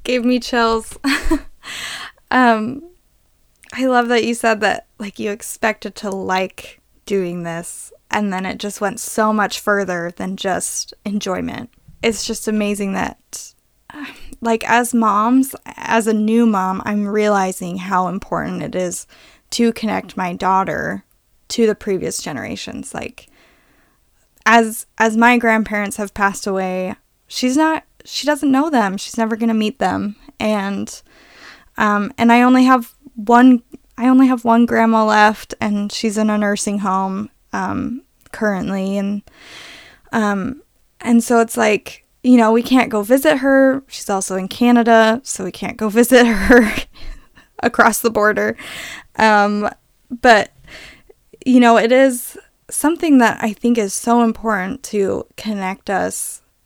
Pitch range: 205-240 Hz